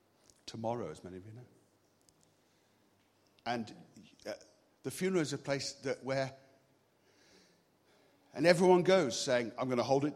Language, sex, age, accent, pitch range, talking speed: English, male, 50-69, British, 130-175 Hz, 135 wpm